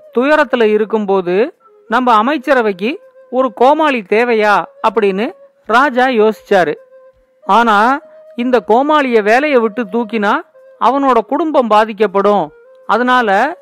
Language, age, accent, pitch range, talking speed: Tamil, 50-69, native, 220-285 Hz, 95 wpm